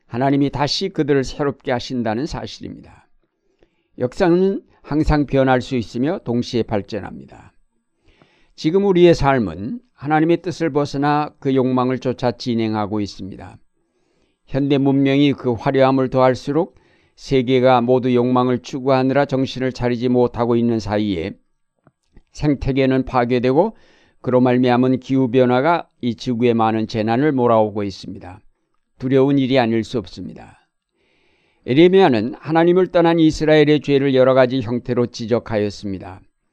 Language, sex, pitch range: Korean, male, 115-140 Hz